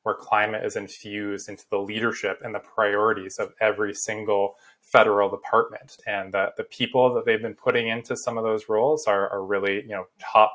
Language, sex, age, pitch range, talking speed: English, male, 20-39, 100-110 Hz, 195 wpm